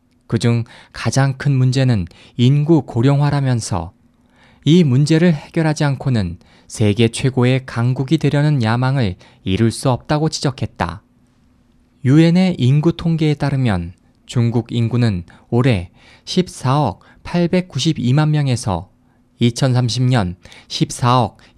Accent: native